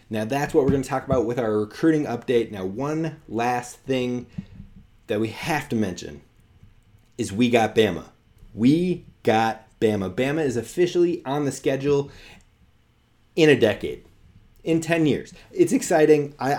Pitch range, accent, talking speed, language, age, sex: 120-155 Hz, American, 155 wpm, English, 30-49, male